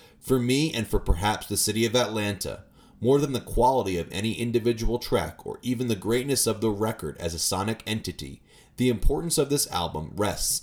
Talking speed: 190 wpm